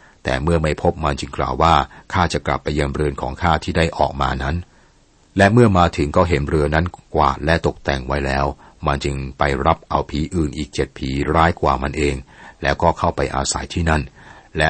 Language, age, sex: Thai, 60-79, male